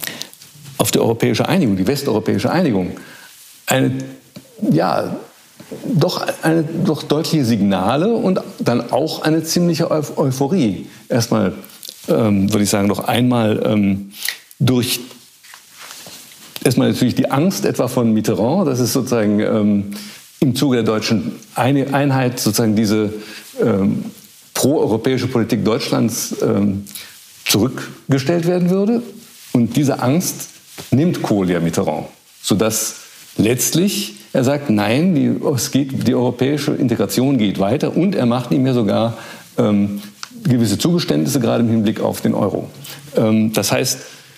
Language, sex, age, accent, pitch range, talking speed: German, male, 60-79, German, 110-165 Hz, 125 wpm